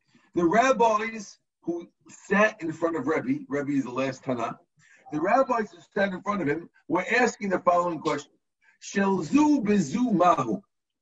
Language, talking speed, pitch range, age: English, 160 wpm, 180-250 Hz, 50-69